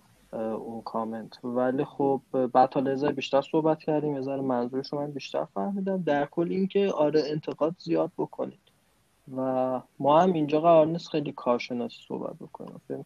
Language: Persian